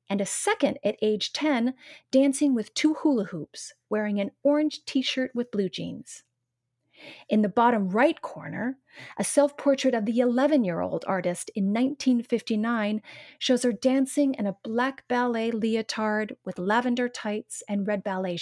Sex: female